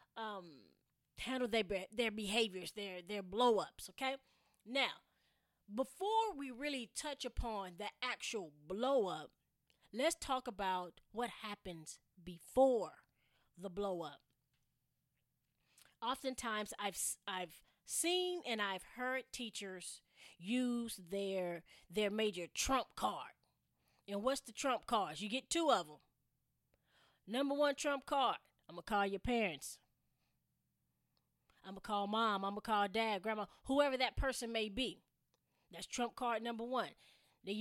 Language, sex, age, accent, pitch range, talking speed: English, female, 20-39, American, 190-260 Hz, 135 wpm